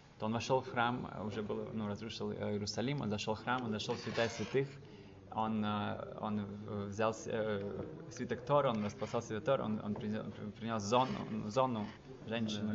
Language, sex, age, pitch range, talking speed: Russian, male, 20-39, 110-140 Hz, 155 wpm